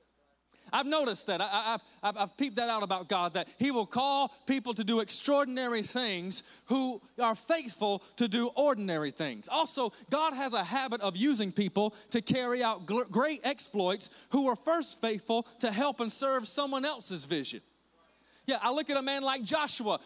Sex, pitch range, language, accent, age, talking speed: male, 215-265 Hz, English, American, 30-49, 170 wpm